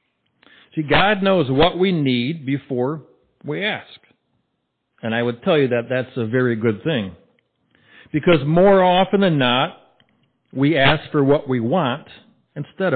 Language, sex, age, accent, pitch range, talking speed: English, male, 60-79, American, 120-150 Hz, 150 wpm